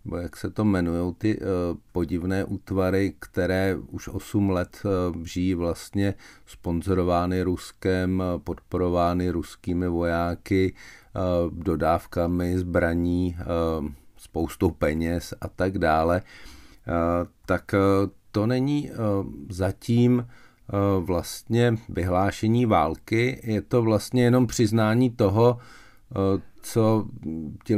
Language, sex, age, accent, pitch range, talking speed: Czech, male, 50-69, native, 90-110 Hz, 85 wpm